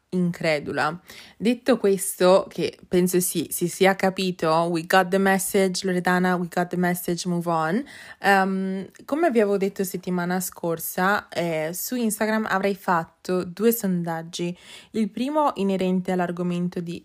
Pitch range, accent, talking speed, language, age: 180-215 Hz, native, 130 wpm, Italian, 20-39